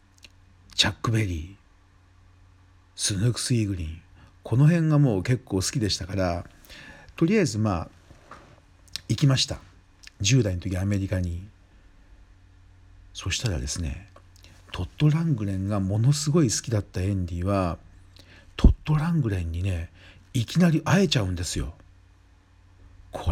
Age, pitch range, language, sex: 50-69, 90-115 Hz, Japanese, male